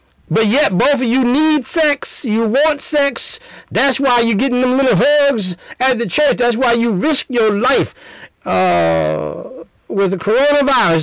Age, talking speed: 60-79, 165 wpm